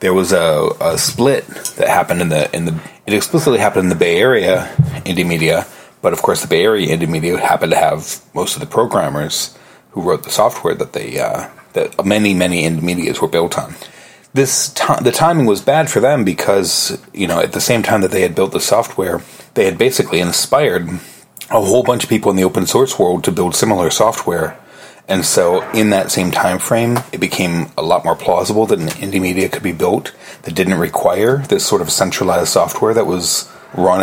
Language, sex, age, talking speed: English, male, 30-49, 210 wpm